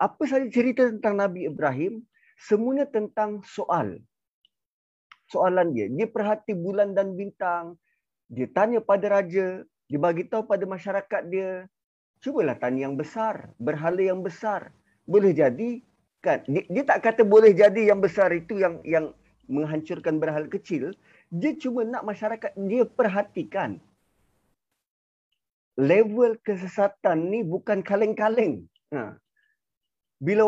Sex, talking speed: male, 120 wpm